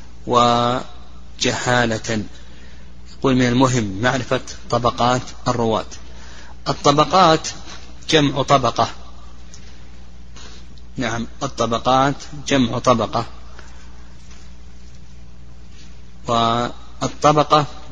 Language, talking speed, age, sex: Arabic, 50 wpm, 30-49, male